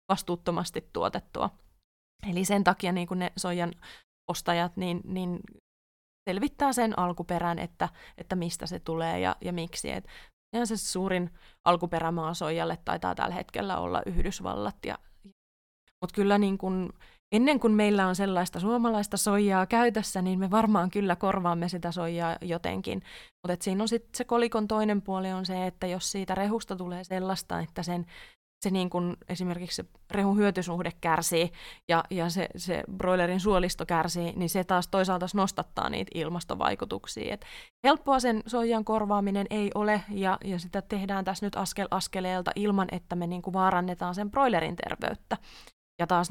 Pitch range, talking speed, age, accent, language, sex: 175-200 Hz, 140 wpm, 20-39, native, Finnish, female